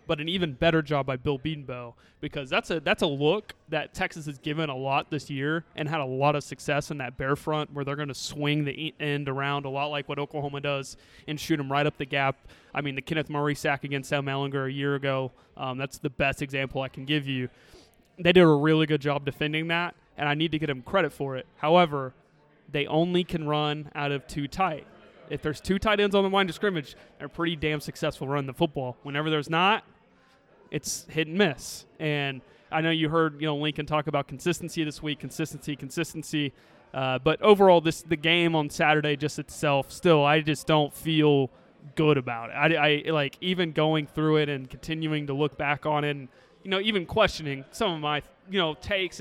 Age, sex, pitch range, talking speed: 20-39, male, 140-165 Hz, 225 wpm